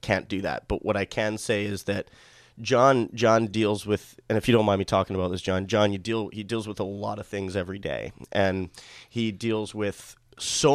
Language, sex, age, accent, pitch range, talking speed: Hebrew, male, 30-49, American, 100-115 Hz, 230 wpm